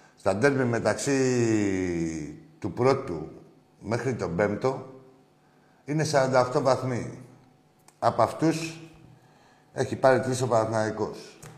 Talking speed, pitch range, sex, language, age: 95 wpm, 110-145 Hz, male, Greek, 60-79